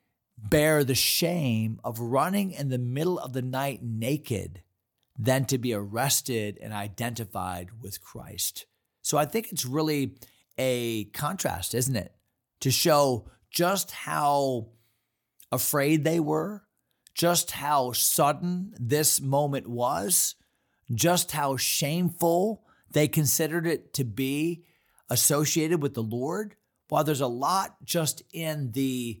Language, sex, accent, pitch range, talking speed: English, male, American, 120-155 Hz, 125 wpm